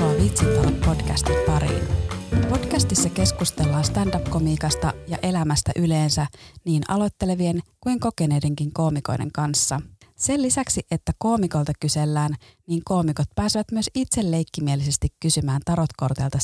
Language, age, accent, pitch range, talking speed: Finnish, 30-49, native, 140-175 Hz, 100 wpm